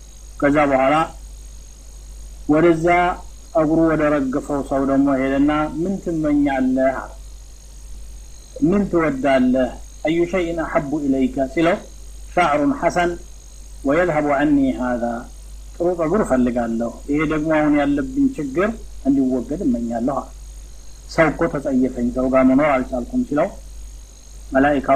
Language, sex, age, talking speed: Amharic, male, 50-69, 85 wpm